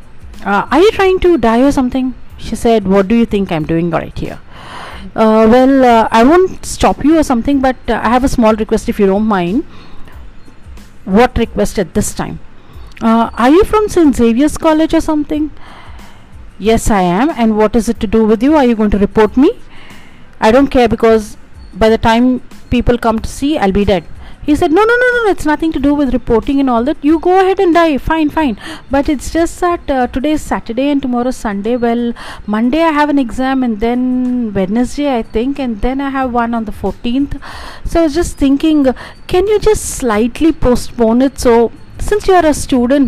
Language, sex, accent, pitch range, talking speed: English, female, Indian, 220-305 Hz, 210 wpm